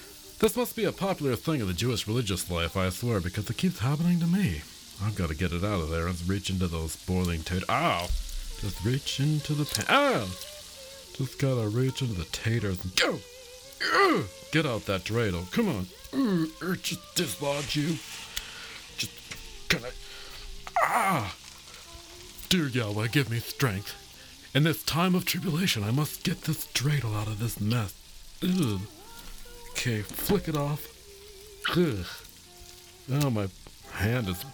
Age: 50-69